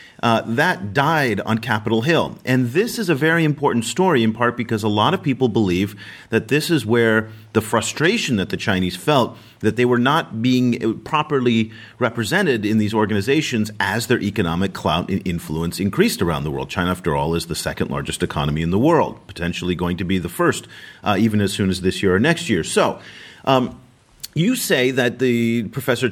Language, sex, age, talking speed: English, male, 40-59, 195 wpm